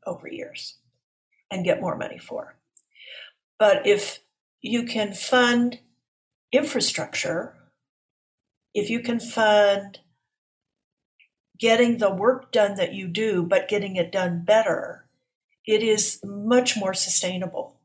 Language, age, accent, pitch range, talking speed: English, 50-69, American, 180-245 Hz, 115 wpm